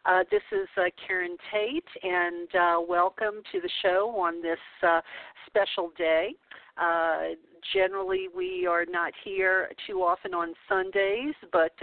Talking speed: 140 wpm